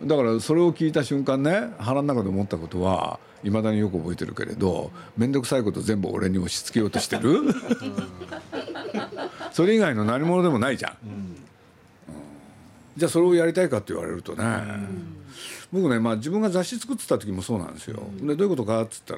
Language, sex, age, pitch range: Japanese, male, 50-69, 100-160 Hz